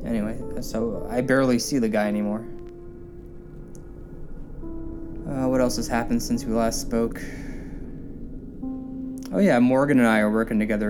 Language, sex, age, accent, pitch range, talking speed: English, male, 20-39, American, 110-135 Hz, 140 wpm